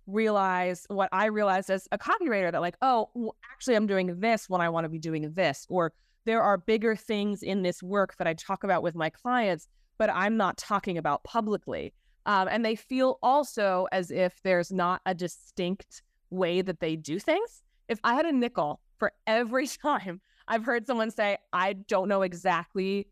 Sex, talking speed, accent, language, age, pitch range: female, 190 wpm, American, English, 20-39, 180-215 Hz